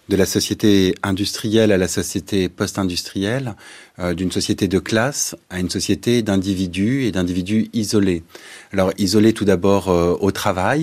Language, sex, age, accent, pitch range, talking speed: French, male, 30-49, French, 95-110 Hz, 150 wpm